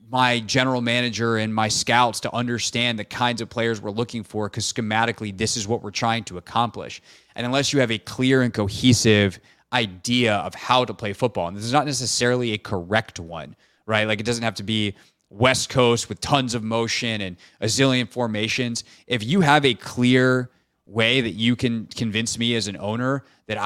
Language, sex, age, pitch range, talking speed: English, male, 20-39, 105-120 Hz, 200 wpm